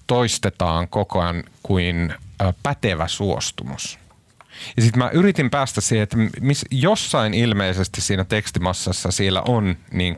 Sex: male